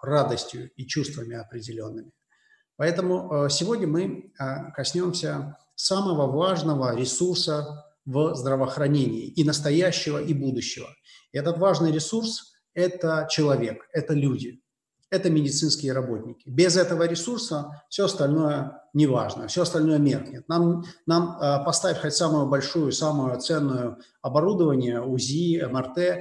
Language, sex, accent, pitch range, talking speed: Russian, male, native, 135-175 Hz, 110 wpm